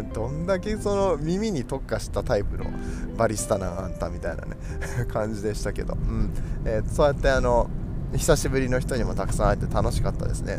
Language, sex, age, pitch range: Japanese, male, 20-39, 110-150 Hz